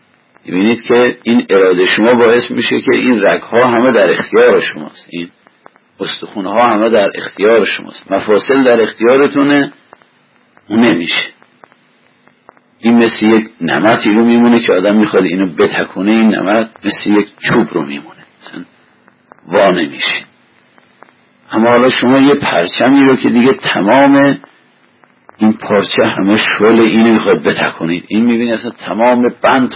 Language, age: Persian, 50-69